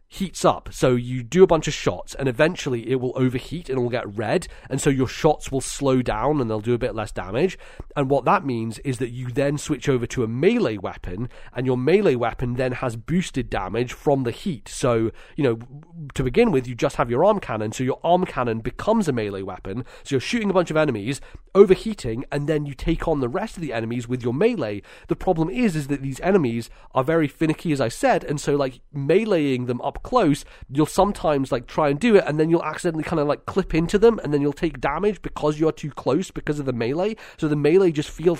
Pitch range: 125-165 Hz